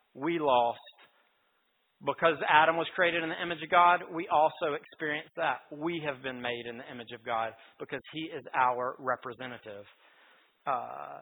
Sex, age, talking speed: male, 40-59, 160 wpm